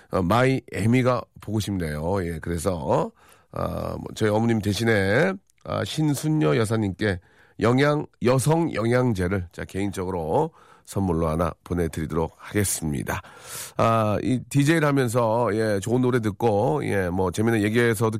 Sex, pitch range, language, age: male, 100-140 Hz, Korean, 40-59